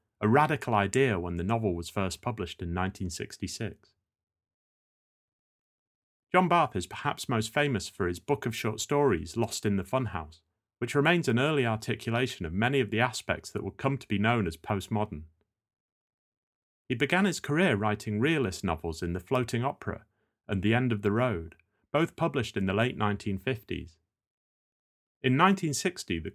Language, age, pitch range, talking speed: English, 30-49, 95-125 Hz, 160 wpm